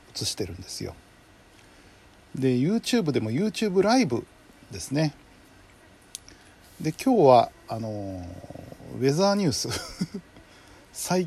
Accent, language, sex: native, Japanese, male